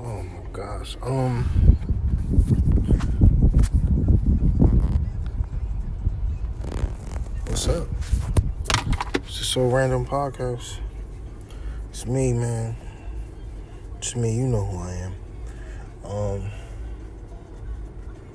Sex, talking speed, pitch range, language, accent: male, 70 wpm, 95-115 Hz, English, American